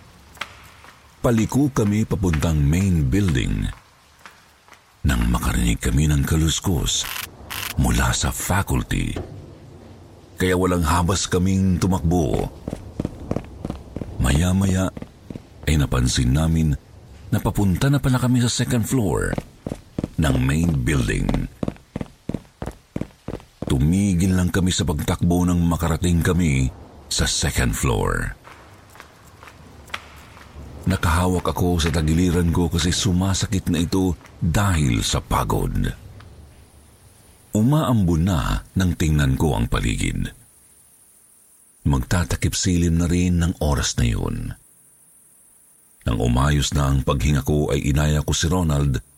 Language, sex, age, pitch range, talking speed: Filipino, male, 50-69, 80-100 Hz, 100 wpm